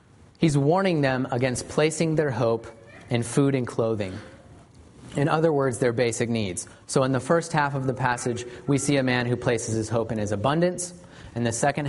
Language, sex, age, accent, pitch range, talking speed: English, male, 30-49, American, 115-140 Hz, 195 wpm